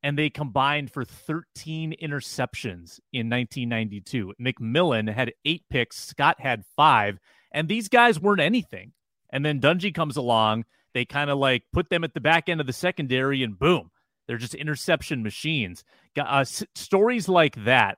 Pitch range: 120-155 Hz